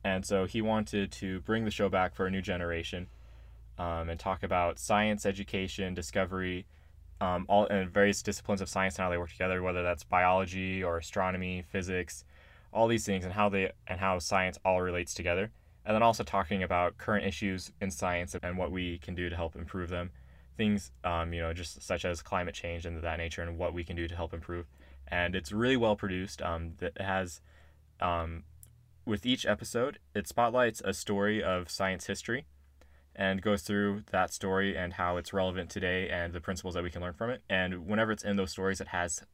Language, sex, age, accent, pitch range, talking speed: English, male, 20-39, American, 85-100 Hz, 205 wpm